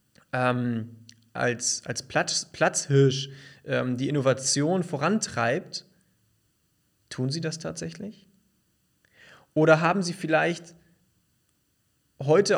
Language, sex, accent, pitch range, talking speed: German, male, German, 125-165 Hz, 80 wpm